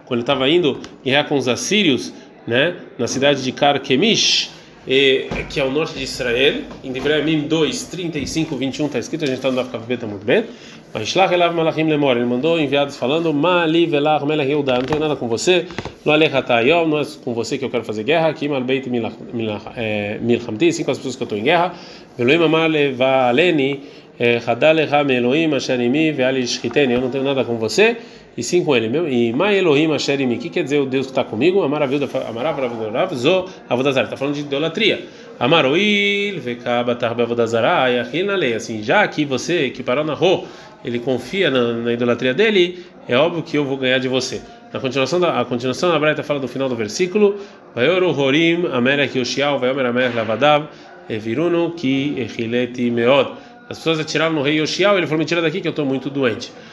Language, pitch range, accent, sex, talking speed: Portuguese, 125-165 Hz, Brazilian, male, 145 wpm